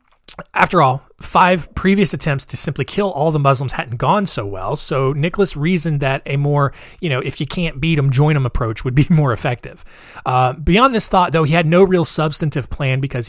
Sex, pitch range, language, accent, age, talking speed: male, 130-165 Hz, English, American, 30-49, 210 wpm